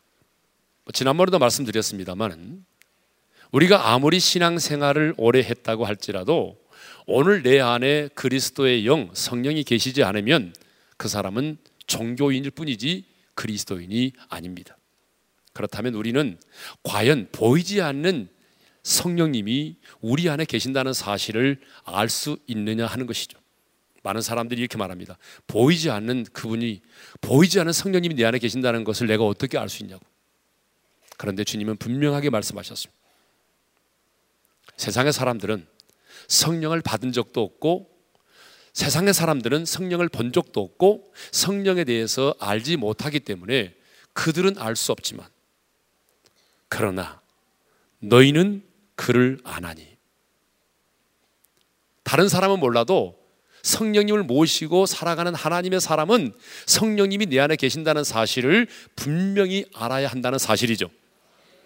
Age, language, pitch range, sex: 40-59, Korean, 115-170 Hz, male